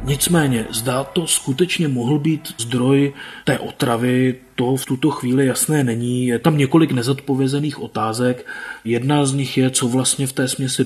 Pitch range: 120-135 Hz